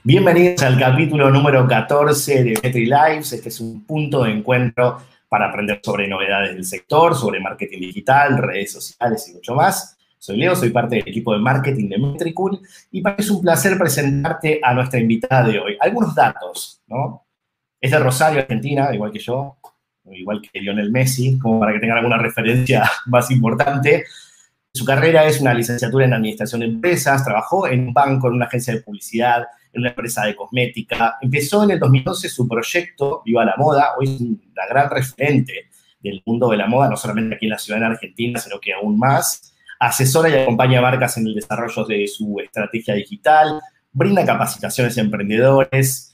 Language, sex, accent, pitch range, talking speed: Spanish, male, Argentinian, 115-145 Hz, 180 wpm